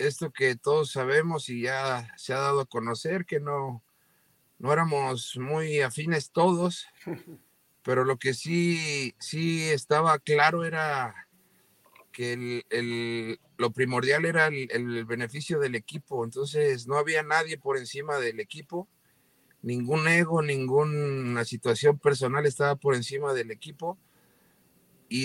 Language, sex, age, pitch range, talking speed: Spanish, male, 50-69, 125-160 Hz, 135 wpm